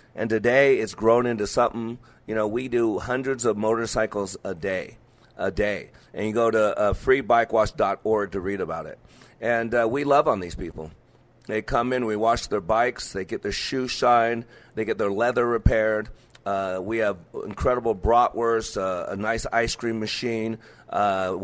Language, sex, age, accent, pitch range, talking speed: English, male, 40-59, American, 110-125 Hz, 175 wpm